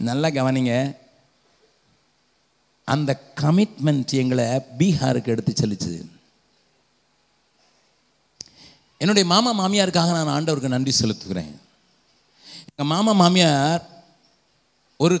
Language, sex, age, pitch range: Urdu, male, 50-69, 145-185 Hz